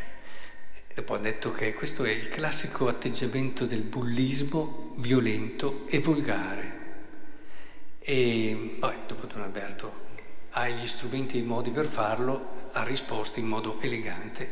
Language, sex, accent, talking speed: Italian, male, native, 130 wpm